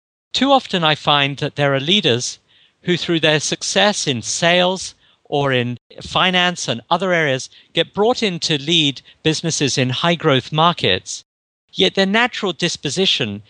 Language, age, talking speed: English, 50-69, 145 wpm